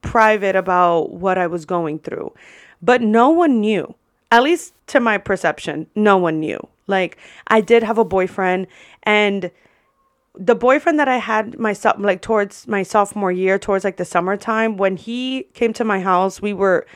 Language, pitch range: English, 180-215 Hz